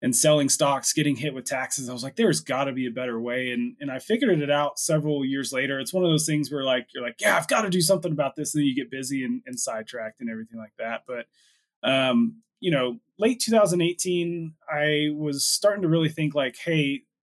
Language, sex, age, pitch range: English, male, 20-39, 130-170 Hz